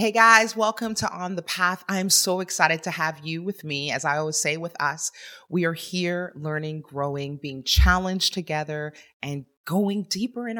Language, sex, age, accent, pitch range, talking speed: English, female, 30-49, American, 145-180 Hz, 185 wpm